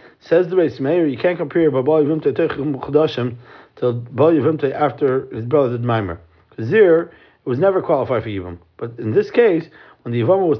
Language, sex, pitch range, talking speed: English, male, 130-165 Hz, 185 wpm